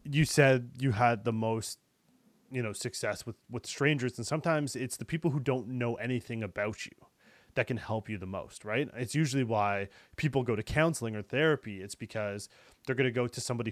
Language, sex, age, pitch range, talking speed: English, male, 20-39, 110-140 Hz, 205 wpm